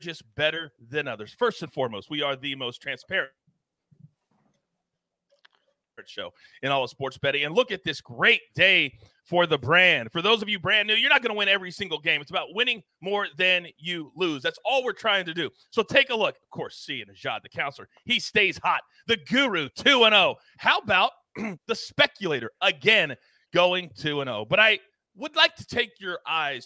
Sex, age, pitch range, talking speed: male, 30-49, 145-220 Hz, 205 wpm